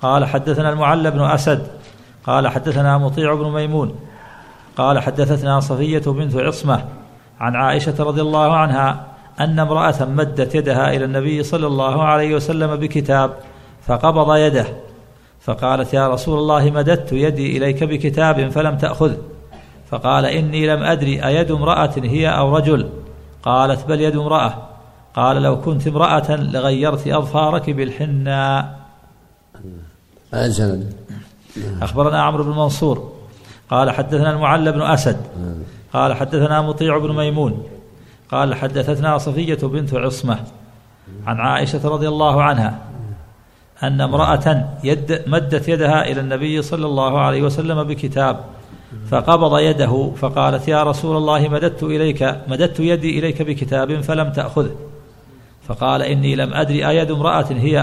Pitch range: 130-155 Hz